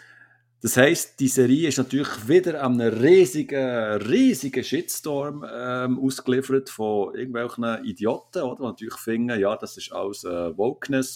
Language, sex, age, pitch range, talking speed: German, male, 50-69, 115-135 Hz, 145 wpm